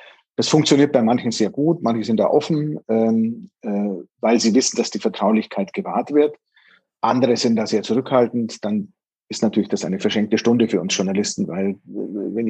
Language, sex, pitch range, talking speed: German, male, 115-140 Hz, 170 wpm